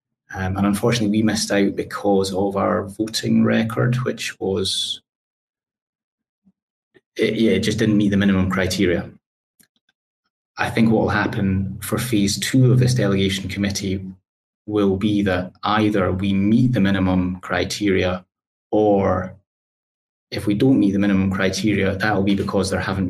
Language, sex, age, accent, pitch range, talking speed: English, male, 20-39, British, 95-105 Hz, 150 wpm